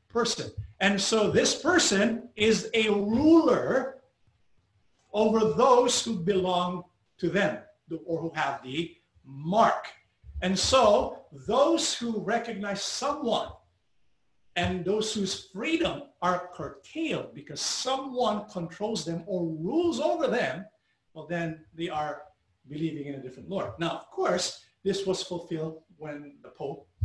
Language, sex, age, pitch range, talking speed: English, male, 50-69, 155-220 Hz, 125 wpm